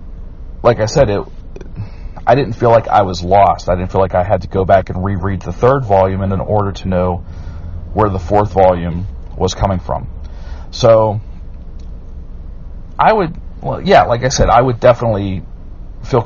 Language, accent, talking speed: English, American, 175 wpm